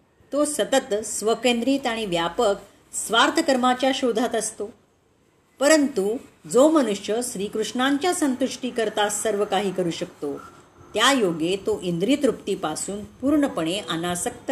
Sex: female